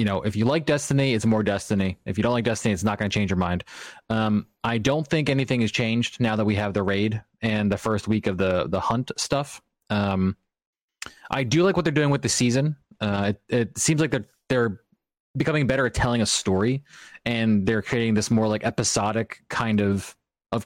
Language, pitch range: English, 105-125 Hz